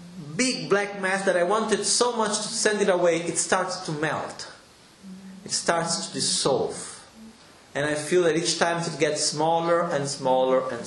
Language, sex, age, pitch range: Italian, male, 40-59, 160-190 Hz